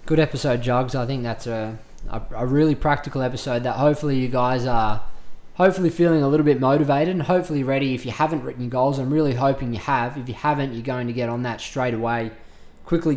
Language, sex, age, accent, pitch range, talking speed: English, male, 20-39, Australian, 115-130 Hz, 225 wpm